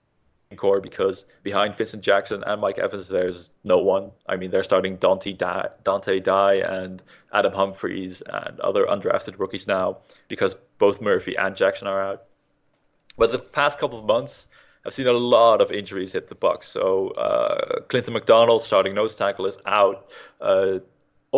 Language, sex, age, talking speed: English, male, 20-39, 165 wpm